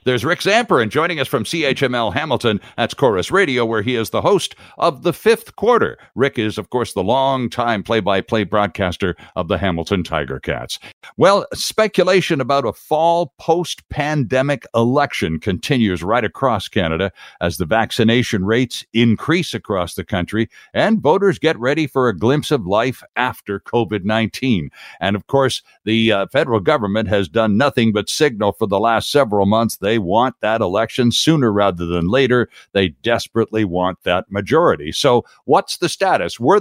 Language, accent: English, American